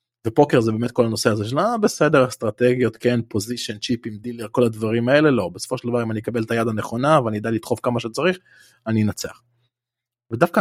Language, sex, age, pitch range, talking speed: Hebrew, male, 20-39, 110-135 Hz, 190 wpm